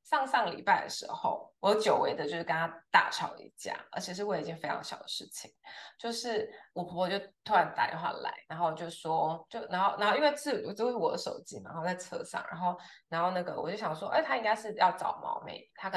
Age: 20-39